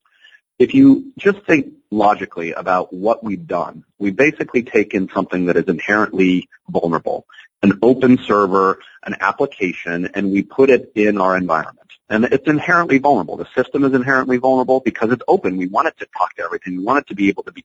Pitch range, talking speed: 95-130 Hz, 195 wpm